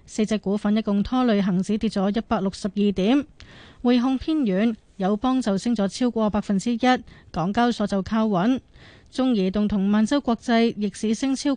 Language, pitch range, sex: Chinese, 200-245 Hz, female